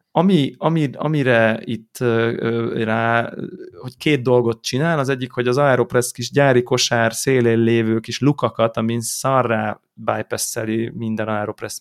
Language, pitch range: Hungarian, 115-135 Hz